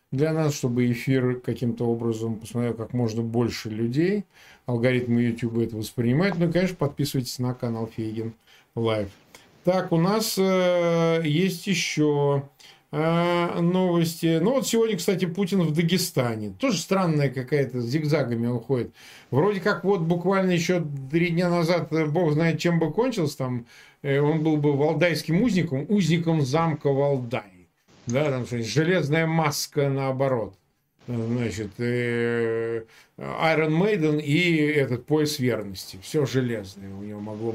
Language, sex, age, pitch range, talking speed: Russian, male, 40-59, 120-180 Hz, 135 wpm